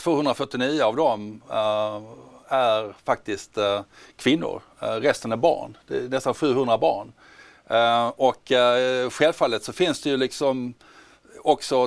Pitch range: 105-145 Hz